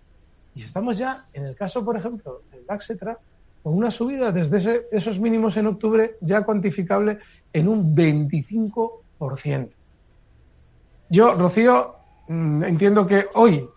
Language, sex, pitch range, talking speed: Spanish, male, 150-210 Hz, 125 wpm